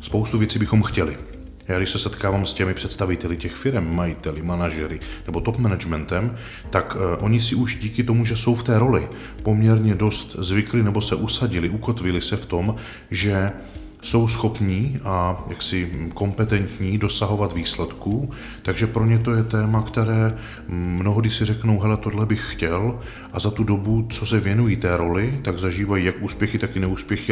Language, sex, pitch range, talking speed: Czech, male, 90-110 Hz, 170 wpm